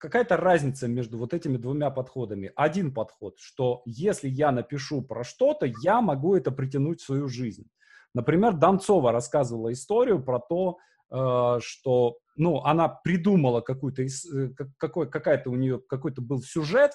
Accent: native